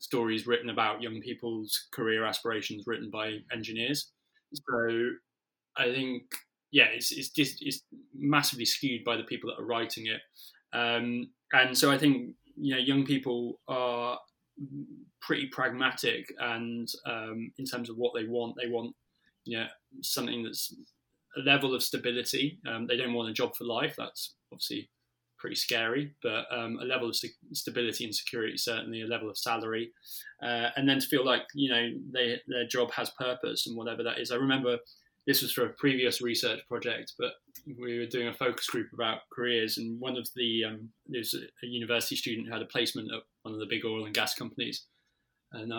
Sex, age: male, 10-29